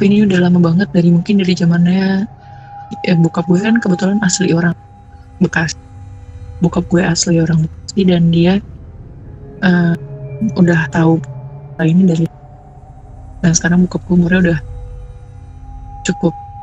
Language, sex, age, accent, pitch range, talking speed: Indonesian, female, 30-49, native, 145-180 Hz, 125 wpm